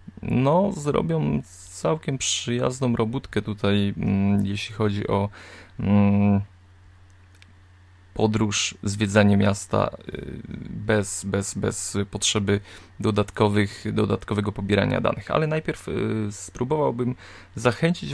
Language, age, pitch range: Polish, 20-39, 100-125 Hz